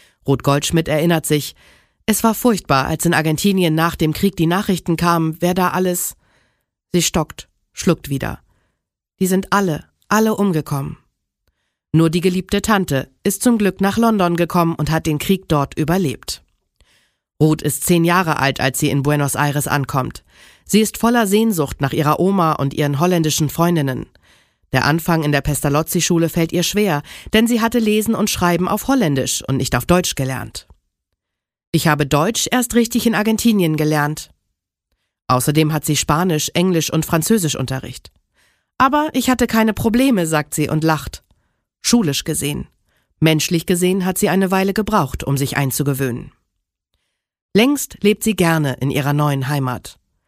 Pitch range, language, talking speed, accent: 145-195 Hz, German, 160 wpm, German